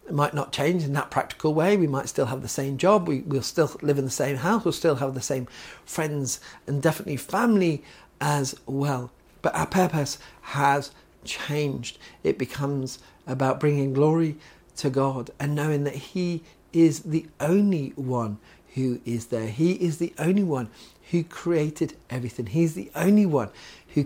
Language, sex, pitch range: English, male, 130-155 Hz